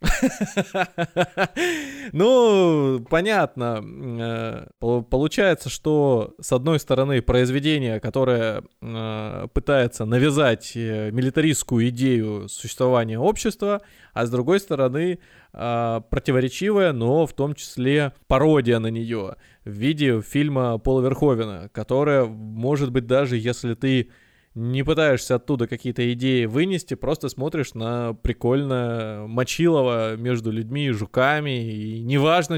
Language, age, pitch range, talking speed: Russian, 20-39, 120-150 Hz, 100 wpm